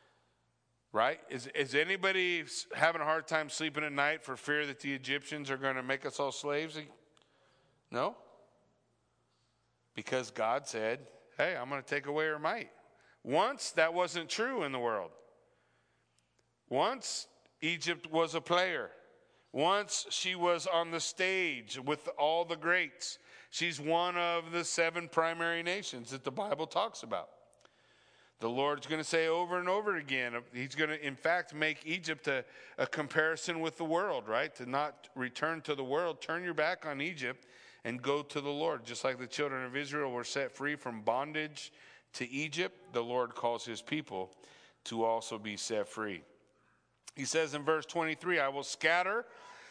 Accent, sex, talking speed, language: American, male, 170 wpm, English